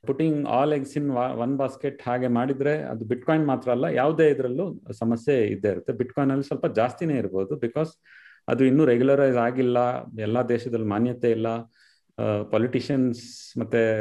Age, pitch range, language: 30-49, 110-150 Hz, Kannada